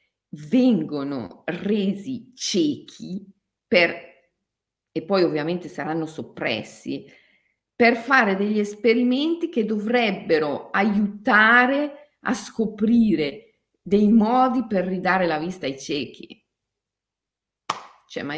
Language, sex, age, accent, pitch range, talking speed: Italian, female, 40-59, native, 170-255 Hz, 90 wpm